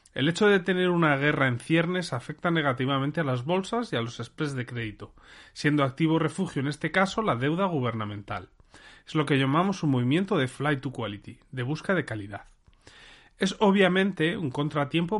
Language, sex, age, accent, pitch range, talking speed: Spanish, male, 30-49, Spanish, 125-175 Hz, 180 wpm